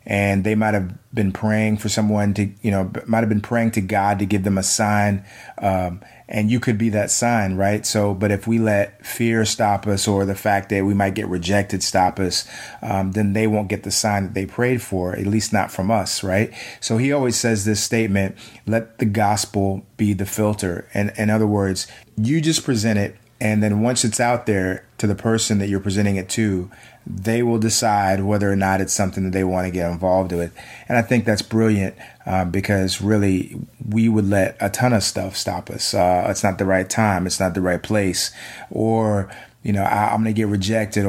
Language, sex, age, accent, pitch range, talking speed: English, male, 30-49, American, 100-110 Hz, 220 wpm